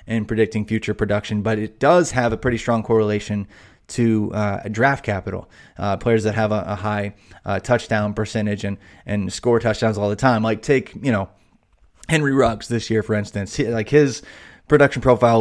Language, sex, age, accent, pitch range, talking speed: English, male, 20-39, American, 105-125 Hz, 190 wpm